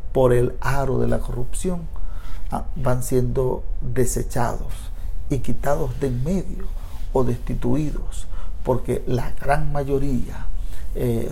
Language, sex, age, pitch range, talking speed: Spanish, male, 50-69, 85-135 Hz, 110 wpm